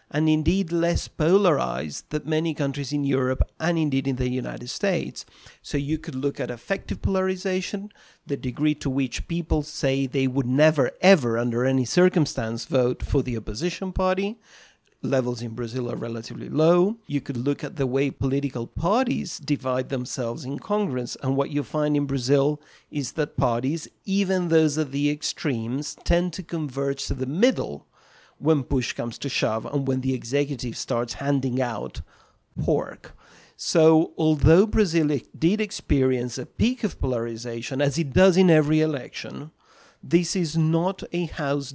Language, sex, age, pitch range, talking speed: English, male, 40-59, 135-170 Hz, 160 wpm